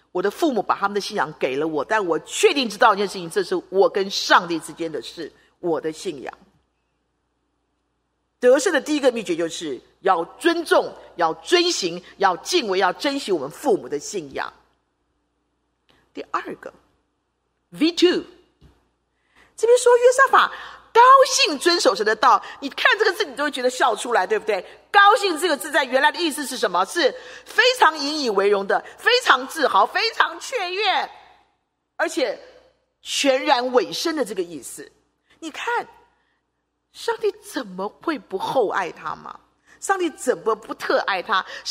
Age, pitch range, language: 40-59, 265-435 Hz, Chinese